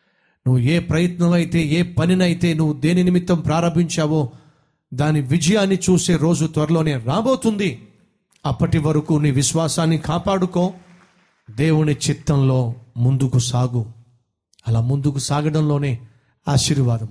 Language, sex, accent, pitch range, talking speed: Telugu, male, native, 140-185 Hz, 100 wpm